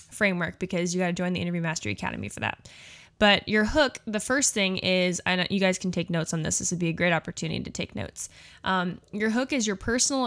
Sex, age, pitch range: female, 10-29, 175-215 Hz